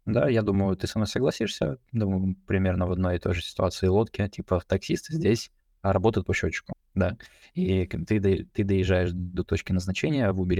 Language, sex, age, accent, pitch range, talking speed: Russian, male, 20-39, native, 90-110 Hz, 180 wpm